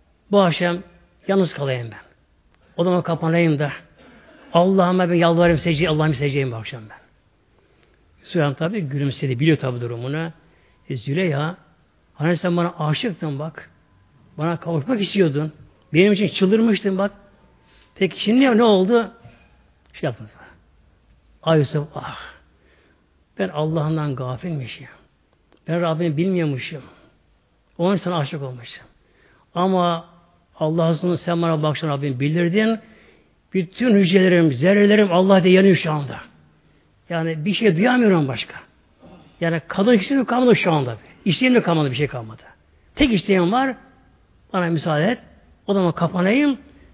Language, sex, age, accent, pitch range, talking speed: Turkish, male, 60-79, native, 135-195 Hz, 125 wpm